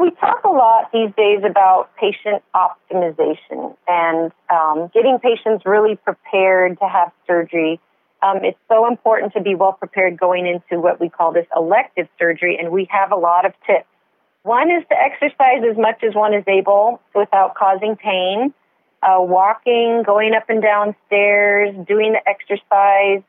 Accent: American